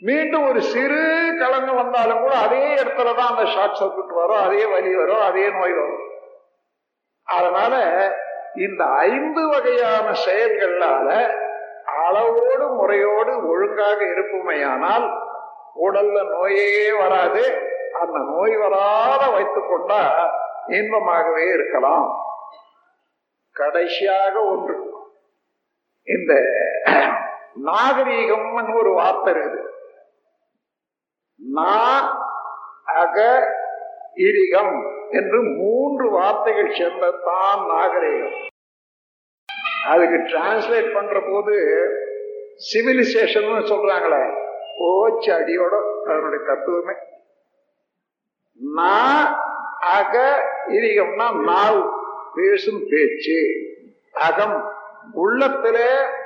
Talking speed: 65 wpm